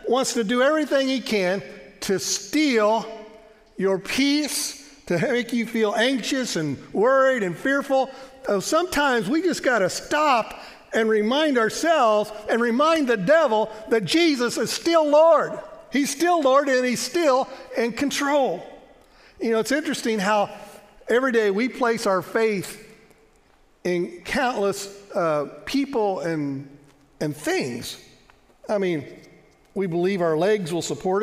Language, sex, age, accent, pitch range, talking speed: English, male, 50-69, American, 185-265 Hz, 140 wpm